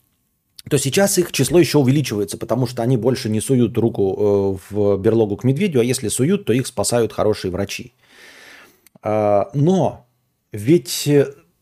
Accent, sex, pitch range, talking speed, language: native, male, 110-175 Hz, 140 wpm, Russian